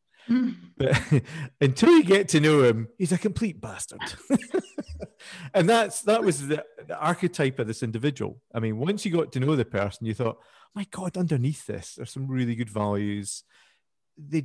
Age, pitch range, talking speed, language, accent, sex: 40-59, 105-140 Hz, 175 wpm, English, British, male